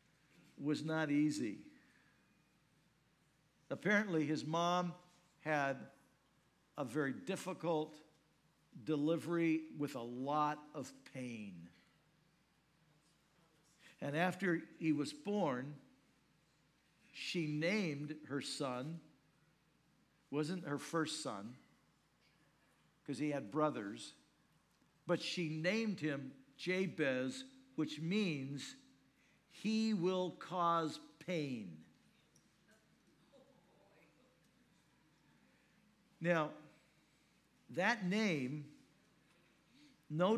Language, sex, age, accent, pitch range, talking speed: English, male, 60-79, American, 150-175 Hz, 70 wpm